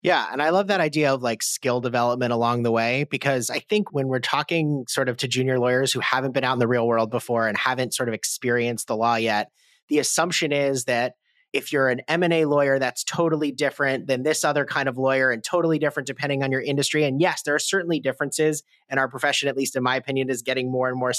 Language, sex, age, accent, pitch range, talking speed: English, male, 30-49, American, 130-160 Hz, 240 wpm